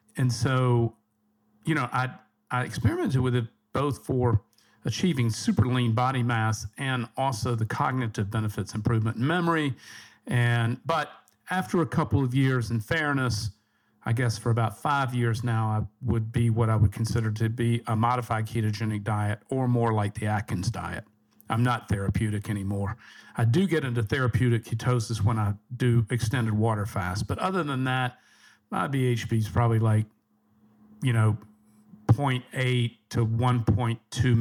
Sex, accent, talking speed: male, American, 155 wpm